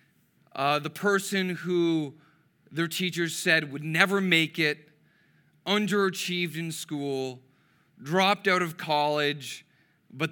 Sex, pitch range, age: male, 145-175 Hz, 40-59